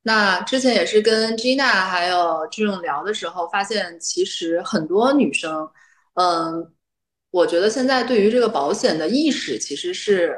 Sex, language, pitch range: female, Chinese, 195-285 Hz